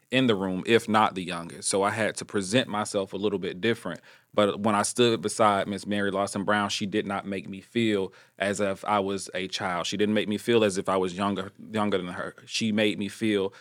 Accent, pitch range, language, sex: American, 100-110 Hz, English, male